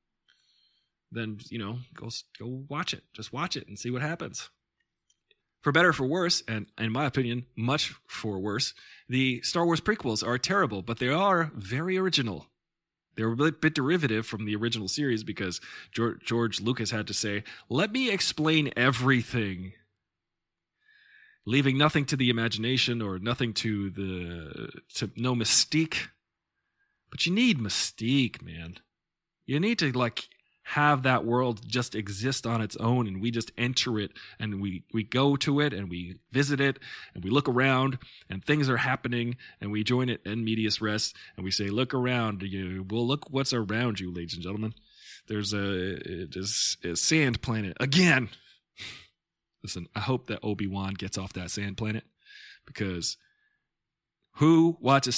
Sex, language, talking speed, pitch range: male, English, 160 wpm, 105-140 Hz